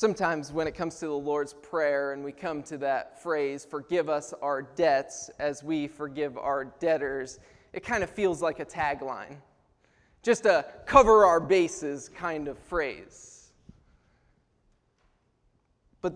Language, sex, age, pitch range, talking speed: English, male, 20-39, 160-230 Hz, 145 wpm